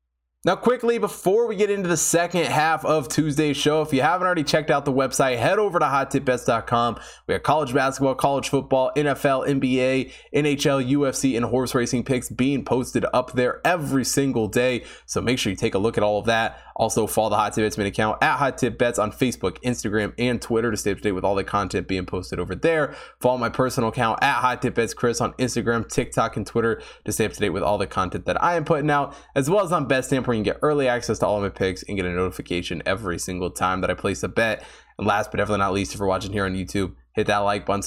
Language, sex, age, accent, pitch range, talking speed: English, male, 20-39, American, 105-135 Hz, 250 wpm